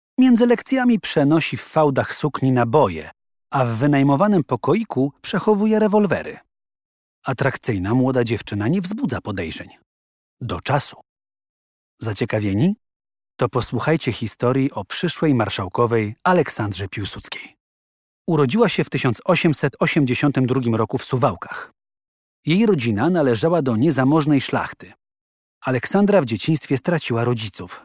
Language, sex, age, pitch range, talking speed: Polish, male, 40-59, 115-160 Hz, 105 wpm